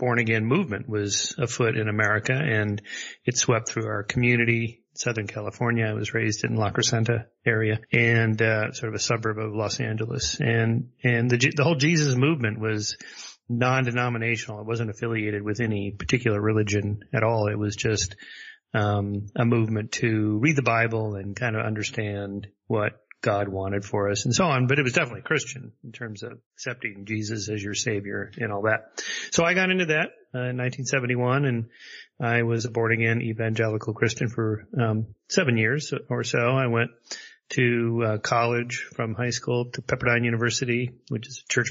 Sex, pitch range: male, 110-125 Hz